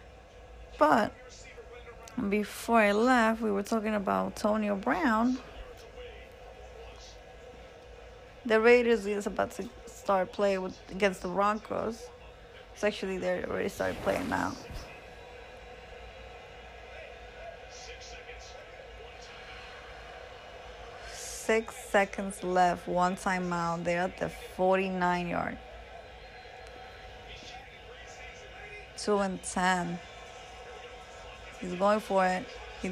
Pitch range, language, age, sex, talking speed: 185-235 Hz, English, 20-39, female, 85 wpm